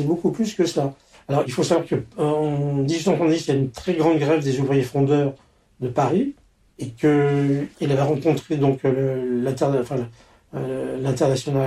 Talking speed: 160 wpm